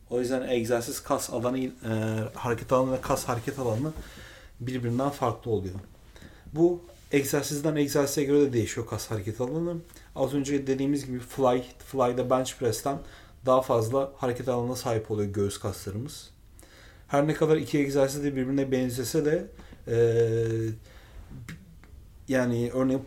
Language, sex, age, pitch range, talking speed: Turkish, male, 40-59, 110-140 Hz, 135 wpm